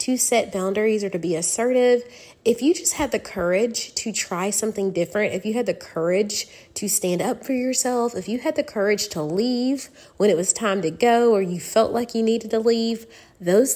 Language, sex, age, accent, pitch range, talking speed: English, female, 20-39, American, 175-225 Hz, 215 wpm